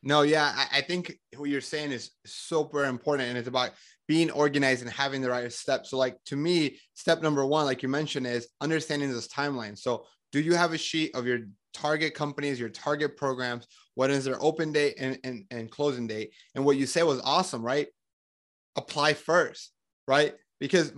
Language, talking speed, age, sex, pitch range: English, 195 wpm, 20-39, male, 130-165 Hz